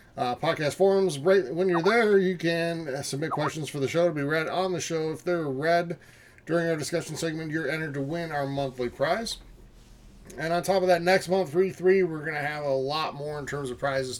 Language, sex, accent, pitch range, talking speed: English, male, American, 130-175 Hz, 230 wpm